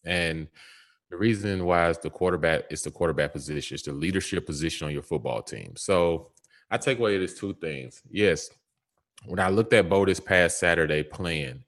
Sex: male